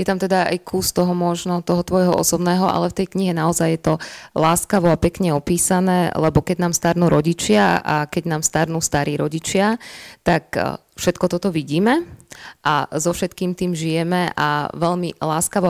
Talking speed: 170 wpm